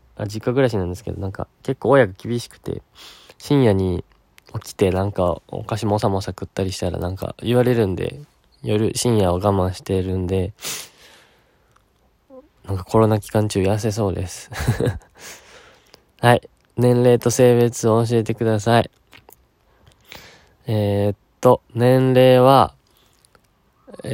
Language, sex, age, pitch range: Japanese, male, 20-39, 95-120 Hz